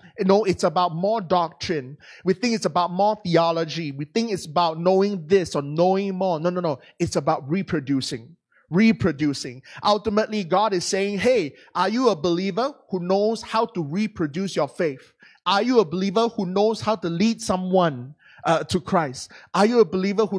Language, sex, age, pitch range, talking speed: English, male, 20-39, 175-230 Hz, 180 wpm